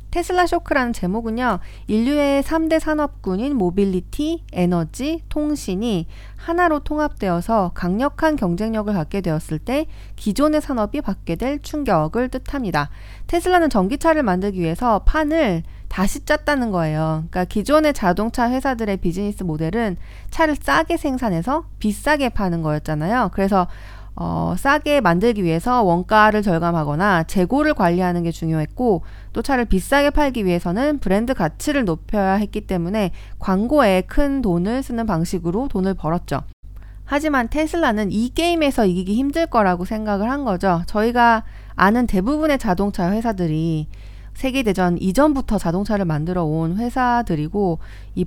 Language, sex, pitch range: Korean, female, 180-275 Hz